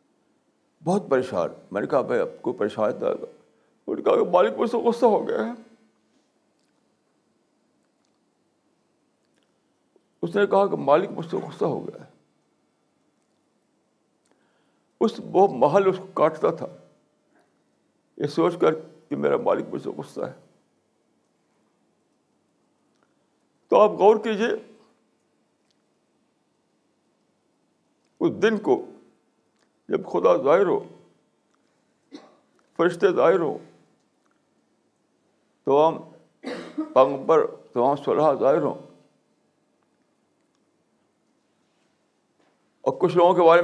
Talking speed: 85 wpm